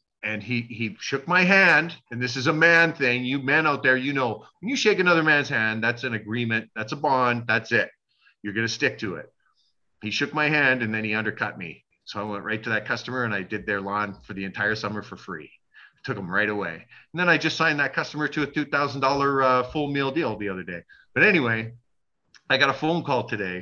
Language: English